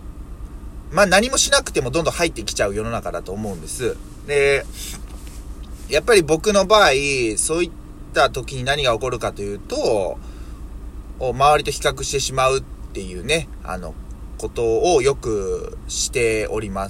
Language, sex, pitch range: Japanese, male, 95-160 Hz